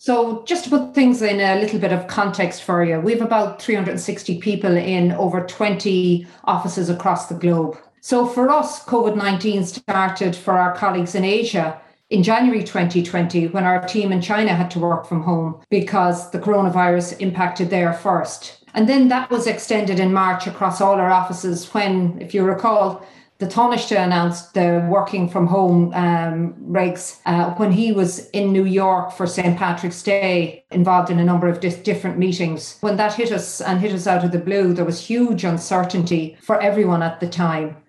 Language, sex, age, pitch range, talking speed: English, female, 40-59, 175-205 Hz, 180 wpm